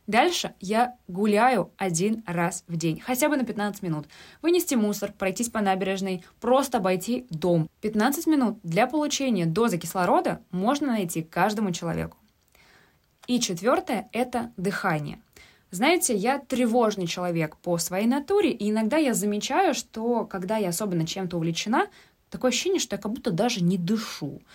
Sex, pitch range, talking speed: female, 185-255 Hz, 145 wpm